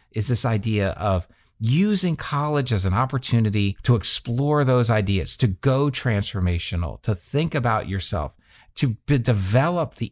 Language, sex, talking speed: English, male, 135 wpm